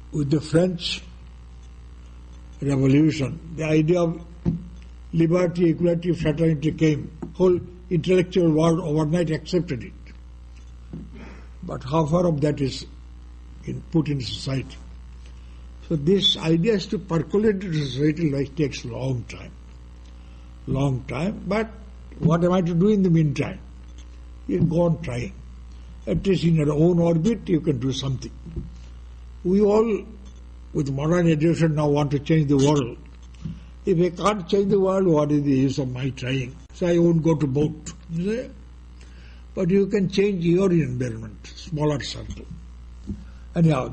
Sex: male